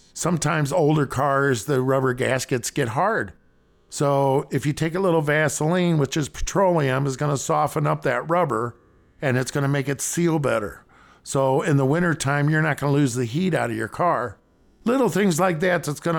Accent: American